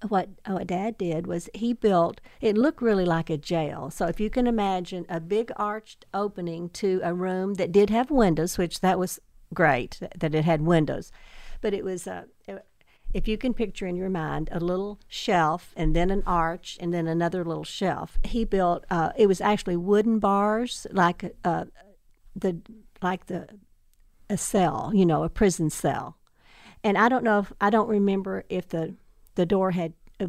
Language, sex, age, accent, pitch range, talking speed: English, female, 50-69, American, 170-205 Hz, 185 wpm